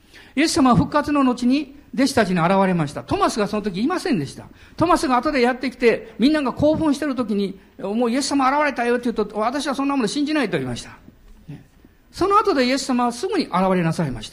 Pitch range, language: 180-285 Hz, Japanese